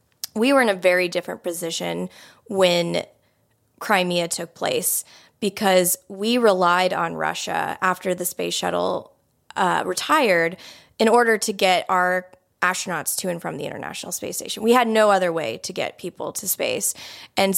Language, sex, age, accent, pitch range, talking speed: English, female, 20-39, American, 180-225 Hz, 155 wpm